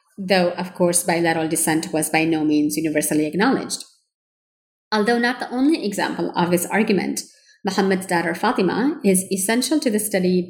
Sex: female